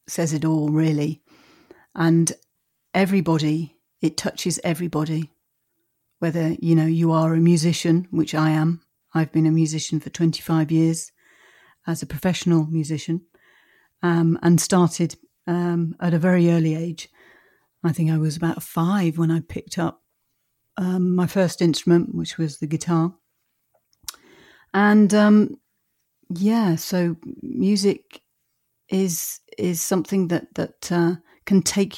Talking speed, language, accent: 130 wpm, English, British